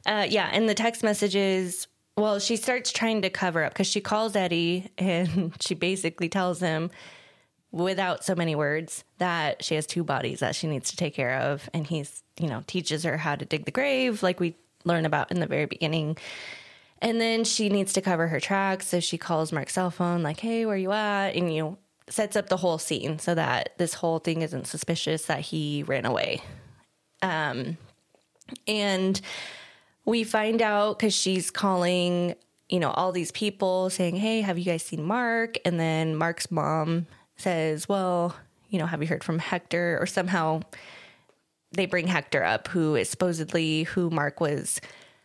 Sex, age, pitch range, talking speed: female, 20-39, 160-205 Hz, 185 wpm